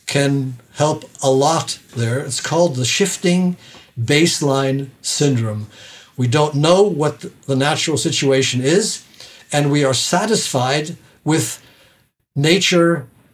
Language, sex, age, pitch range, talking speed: Greek, male, 60-79, 130-165 Hz, 115 wpm